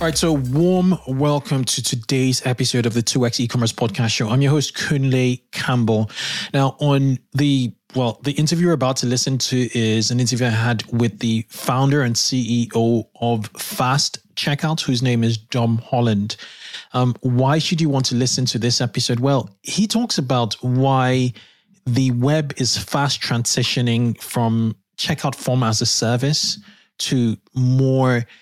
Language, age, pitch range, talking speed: English, 20-39, 115-135 Hz, 160 wpm